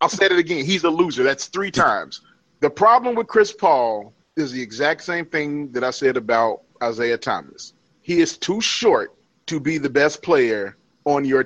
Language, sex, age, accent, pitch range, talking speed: English, male, 30-49, American, 145-200 Hz, 195 wpm